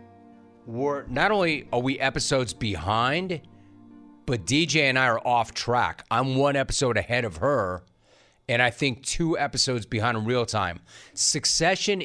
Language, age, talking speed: English, 30-49, 145 wpm